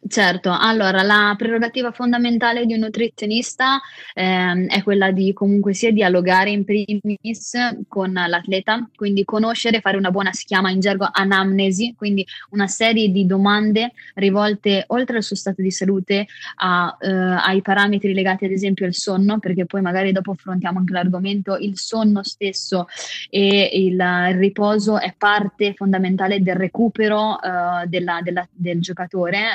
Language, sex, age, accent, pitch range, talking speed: Italian, female, 20-39, native, 185-215 Hz, 150 wpm